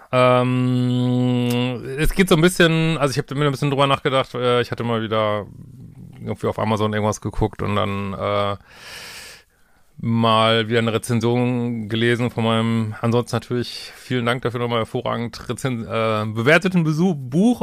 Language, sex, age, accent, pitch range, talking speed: German, male, 30-49, German, 110-130 Hz, 155 wpm